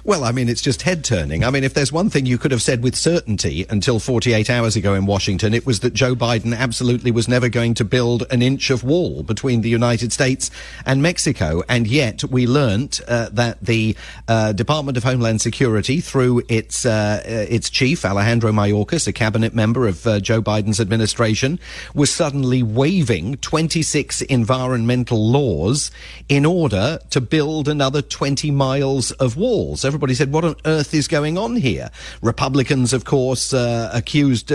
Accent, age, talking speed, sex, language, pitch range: British, 40-59, 175 wpm, male, English, 115-150 Hz